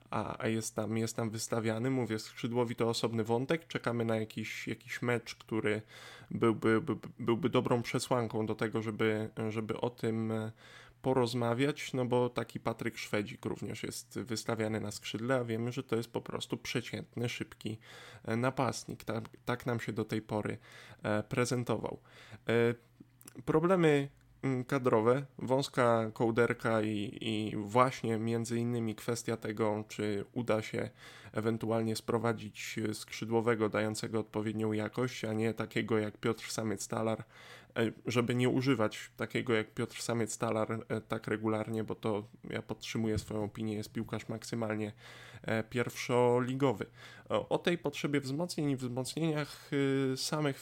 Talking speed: 130 wpm